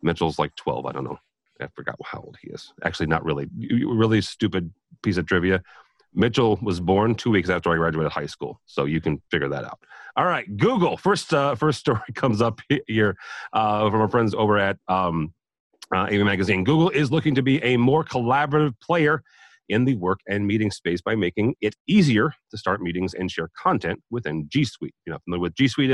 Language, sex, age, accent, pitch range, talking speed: English, male, 40-59, American, 90-125 Hz, 205 wpm